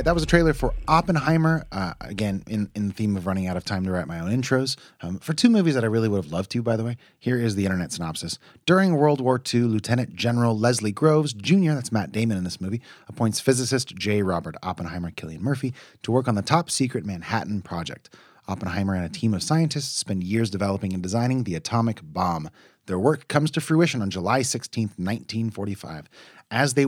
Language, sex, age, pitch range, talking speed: English, male, 30-49, 95-130 Hz, 215 wpm